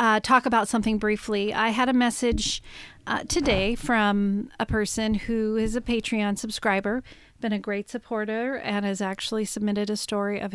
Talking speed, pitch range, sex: 170 wpm, 205-240 Hz, female